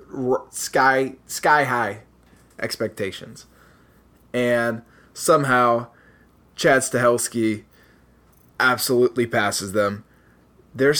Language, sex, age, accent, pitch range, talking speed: English, male, 20-39, American, 100-125 Hz, 65 wpm